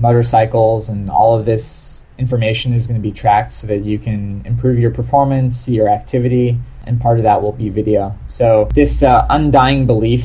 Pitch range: 105-120 Hz